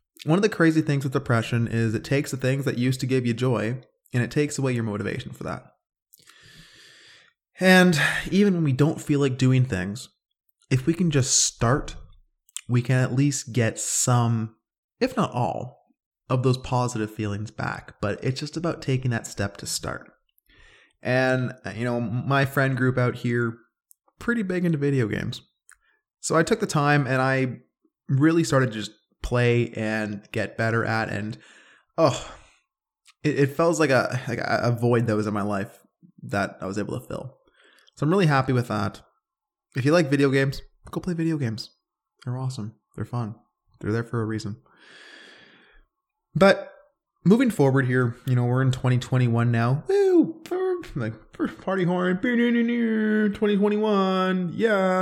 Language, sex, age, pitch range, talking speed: English, male, 20-39, 120-185 Hz, 165 wpm